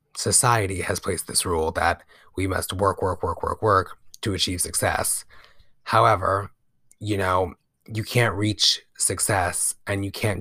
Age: 30-49